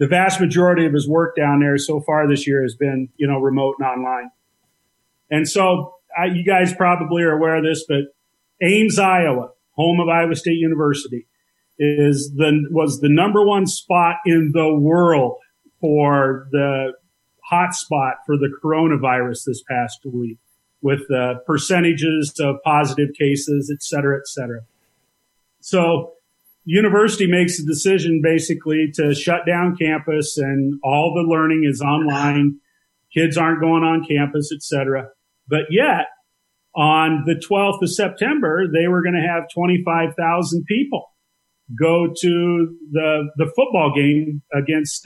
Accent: American